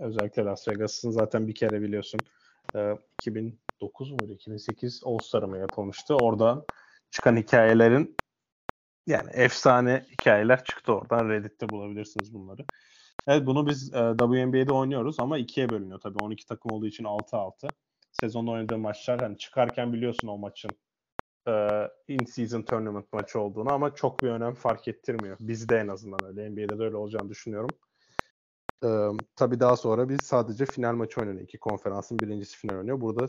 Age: 30-49